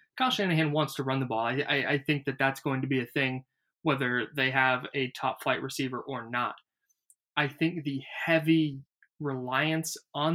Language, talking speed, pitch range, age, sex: English, 190 wpm, 130-150 Hz, 20-39, male